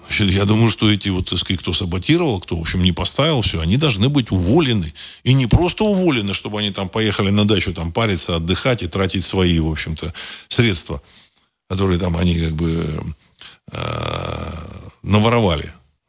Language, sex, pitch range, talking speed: Russian, male, 90-120 Hz, 155 wpm